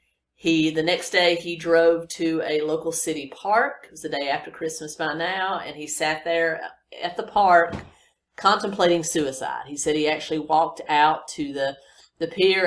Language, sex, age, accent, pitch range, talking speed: English, female, 40-59, American, 150-180 Hz, 180 wpm